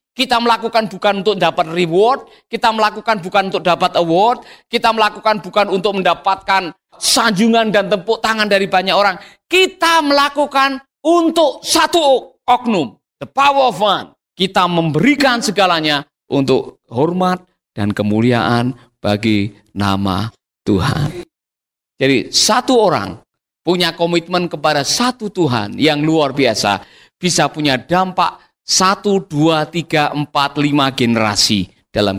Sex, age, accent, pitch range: male, 50-69, native, 140-205 Hz